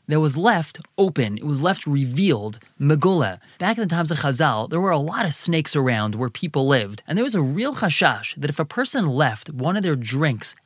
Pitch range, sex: 130-185 Hz, male